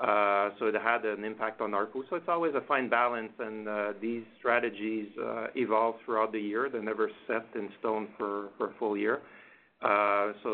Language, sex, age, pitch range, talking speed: English, male, 50-69, 105-115 Hz, 200 wpm